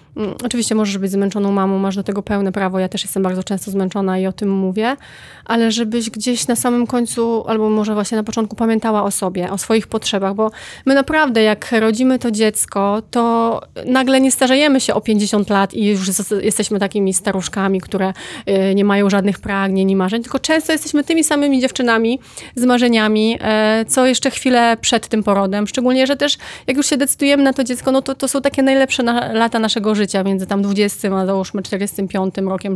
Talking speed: 190 wpm